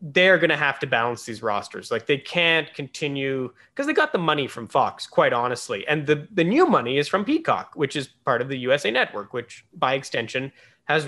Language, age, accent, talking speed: English, 20-39, American, 215 wpm